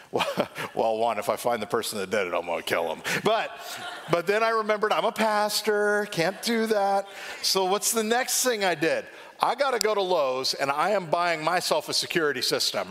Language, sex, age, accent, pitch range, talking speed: English, male, 50-69, American, 160-225 Hz, 220 wpm